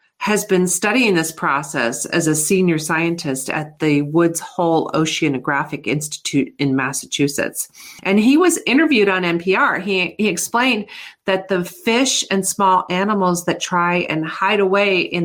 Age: 40-59